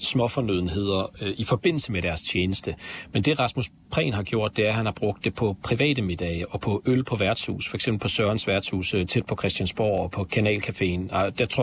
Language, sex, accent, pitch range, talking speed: Danish, male, native, 95-120 Hz, 205 wpm